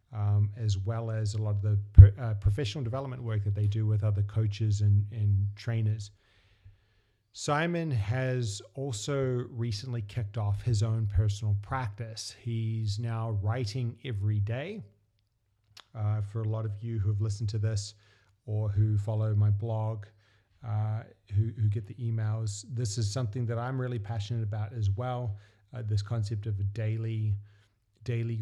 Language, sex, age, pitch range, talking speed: English, male, 30-49, 105-115 Hz, 160 wpm